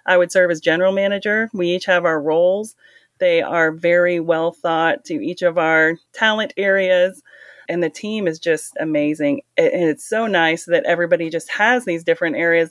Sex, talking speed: female, 185 wpm